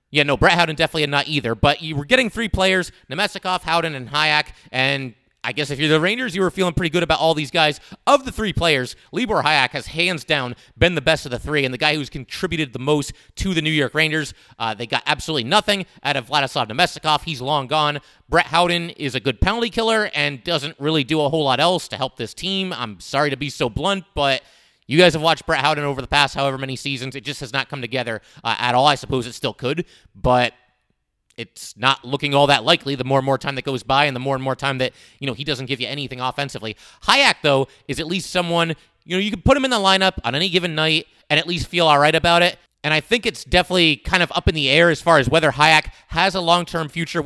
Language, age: English, 30-49